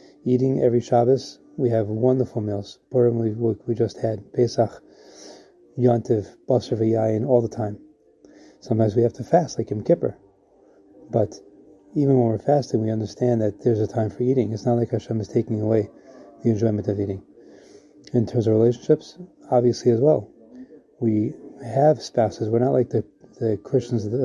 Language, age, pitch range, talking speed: English, 30-49, 110-130 Hz, 165 wpm